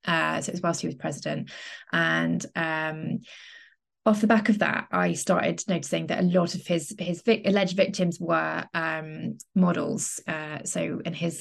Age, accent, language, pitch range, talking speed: 20-39, British, English, 165-205 Hz, 180 wpm